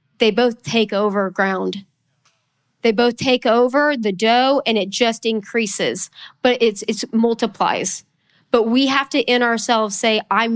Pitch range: 195-245 Hz